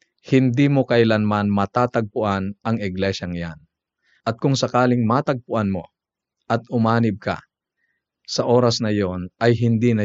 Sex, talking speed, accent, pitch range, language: male, 130 wpm, native, 100-125 Hz, Filipino